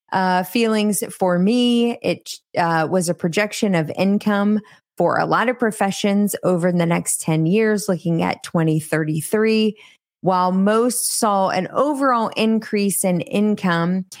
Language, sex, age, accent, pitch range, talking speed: English, female, 20-39, American, 170-205 Hz, 135 wpm